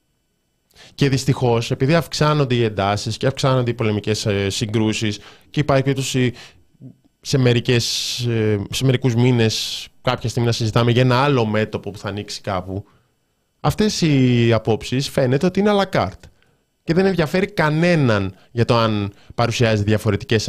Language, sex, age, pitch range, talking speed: Greek, male, 20-39, 100-135 Hz, 140 wpm